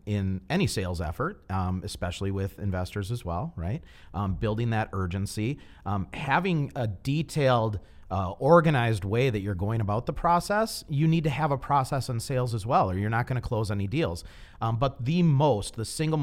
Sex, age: male, 40-59